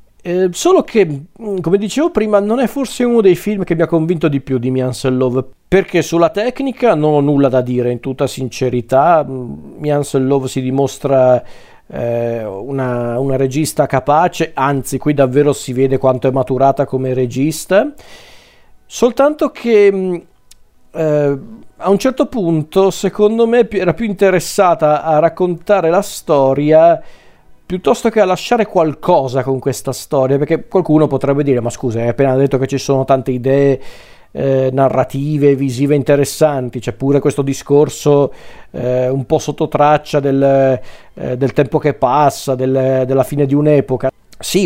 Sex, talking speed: male, 150 wpm